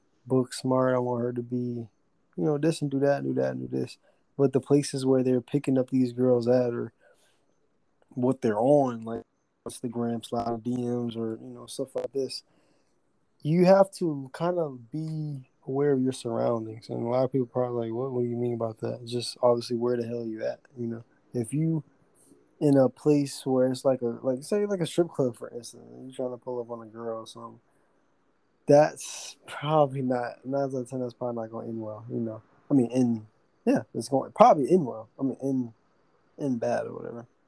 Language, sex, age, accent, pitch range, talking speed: English, male, 20-39, American, 120-135 Hz, 225 wpm